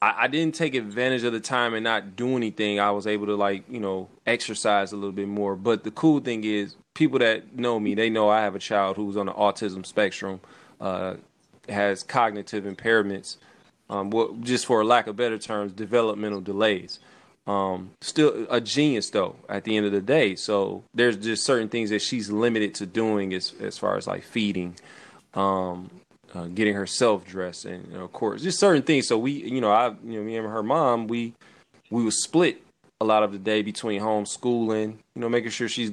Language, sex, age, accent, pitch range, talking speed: English, male, 20-39, American, 100-120 Hz, 205 wpm